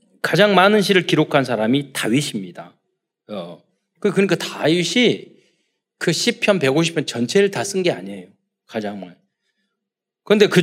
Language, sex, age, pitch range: Korean, male, 40-59, 145-220 Hz